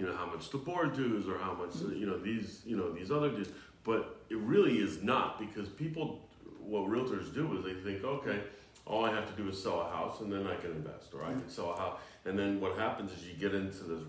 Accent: American